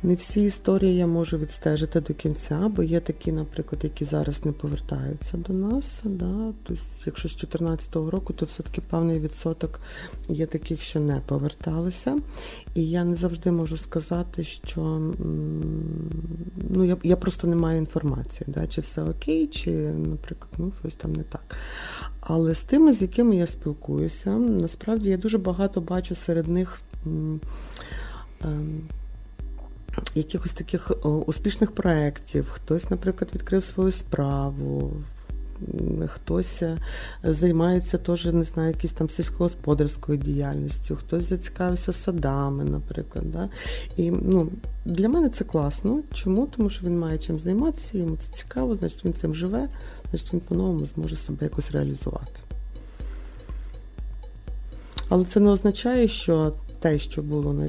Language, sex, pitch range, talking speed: Ukrainian, female, 150-185 Hz, 135 wpm